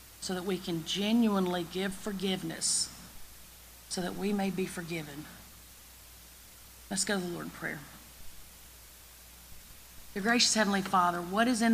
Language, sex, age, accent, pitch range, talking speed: English, female, 40-59, American, 160-210 Hz, 140 wpm